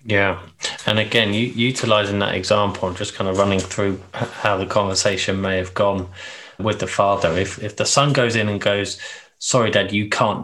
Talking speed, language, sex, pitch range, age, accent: 195 wpm, English, male, 95-115 Hz, 20-39, British